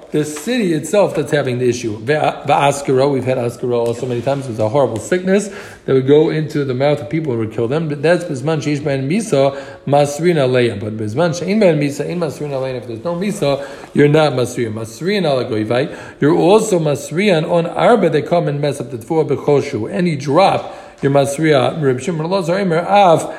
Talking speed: 190 wpm